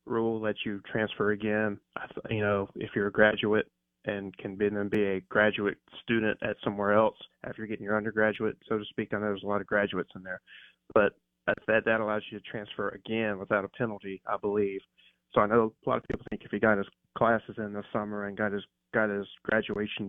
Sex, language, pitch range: male, English, 100-110 Hz